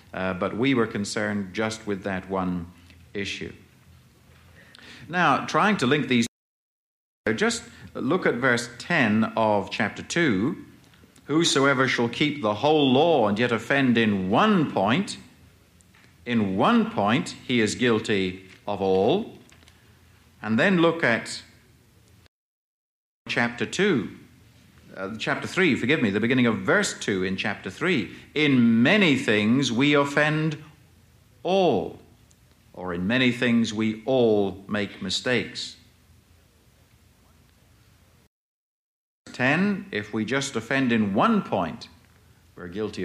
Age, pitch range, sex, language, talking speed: 50-69, 95-125 Hz, male, English, 125 wpm